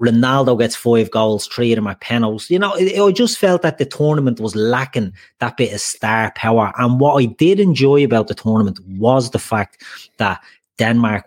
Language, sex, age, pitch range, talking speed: English, male, 30-49, 105-135 Hz, 190 wpm